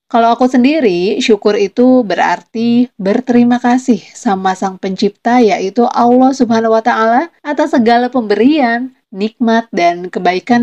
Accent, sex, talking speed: native, female, 125 wpm